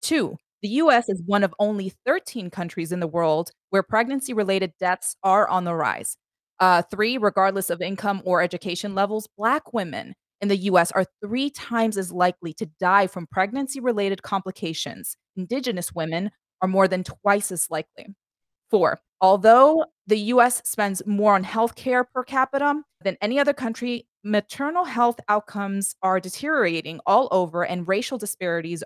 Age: 20-39